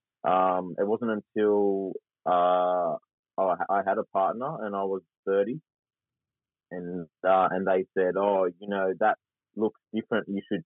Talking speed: 150 wpm